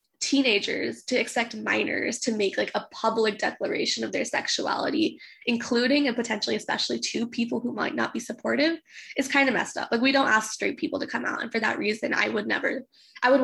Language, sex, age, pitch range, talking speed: English, female, 10-29, 220-275 Hz, 210 wpm